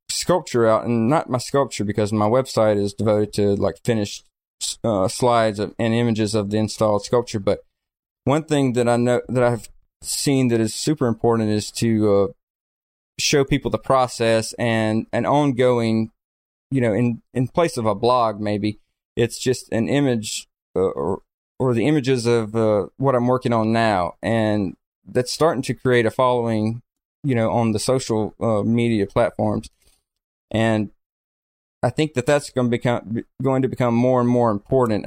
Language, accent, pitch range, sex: English, American, 110-125 Hz, male